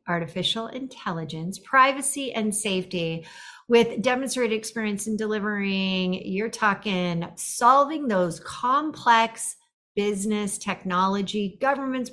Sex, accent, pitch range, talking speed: female, American, 180-230 Hz, 90 wpm